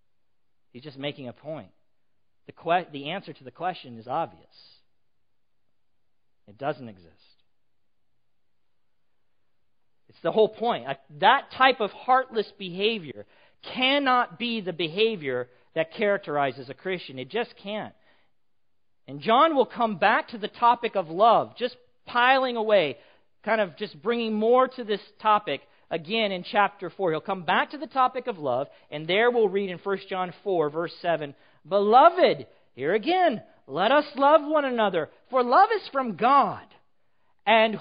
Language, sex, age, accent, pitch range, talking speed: English, male, 40-59, American, 150-255 Hz, 150 wpm